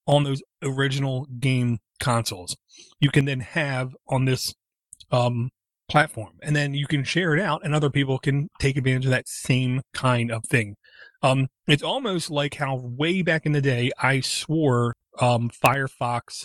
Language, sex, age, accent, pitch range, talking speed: English, male, 30-49, American, 125-145 Hz, 170 wpm